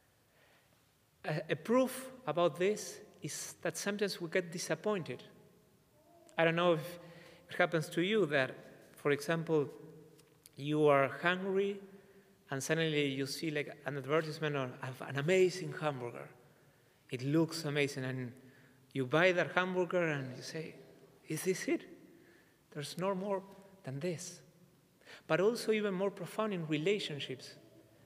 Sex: male